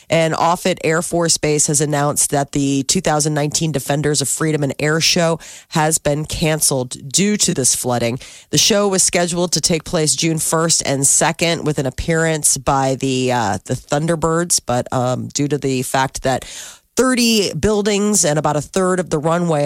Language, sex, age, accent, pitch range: Japanese, female, 30-49, American, 140-185 Hz